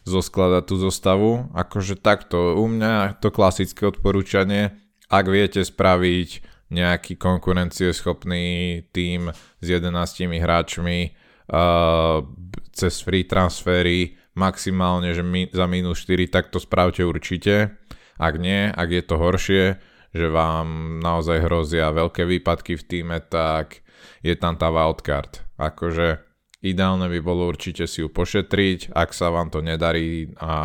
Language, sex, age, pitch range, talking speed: Slovak, male, 20-39, 80-95 Hz, 130 wpm